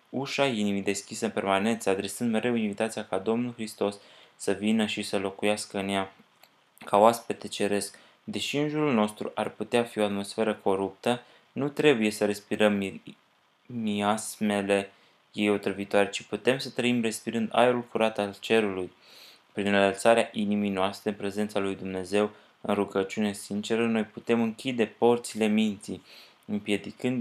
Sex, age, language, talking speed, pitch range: male, 20-39, Romanian, 145 wpm, 100-115 Hz